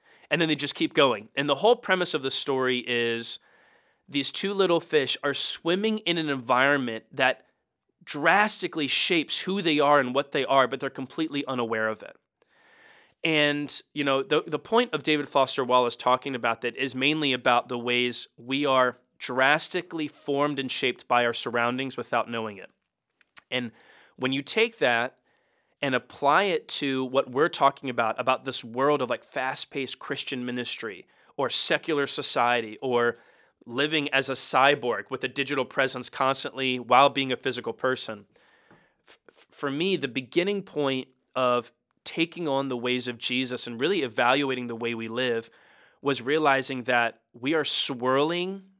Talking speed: 165 wpm